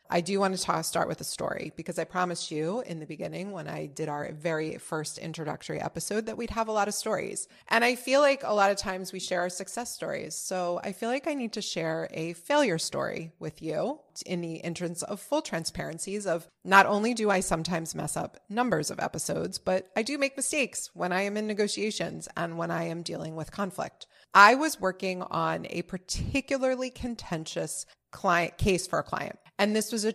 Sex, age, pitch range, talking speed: female, 30-49, 165-205 Hz, 215 wpm